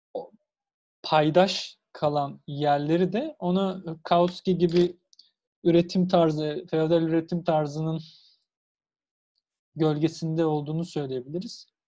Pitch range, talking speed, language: 150-185 Hz, 75 wpm, Turkish